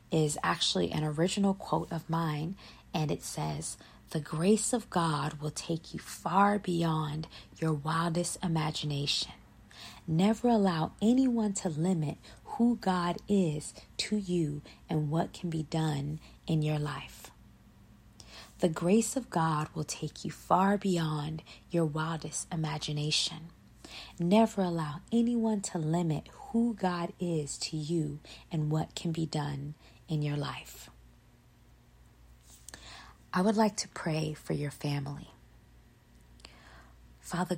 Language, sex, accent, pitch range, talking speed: English, female, American, 150-185 Hz, 125 wpm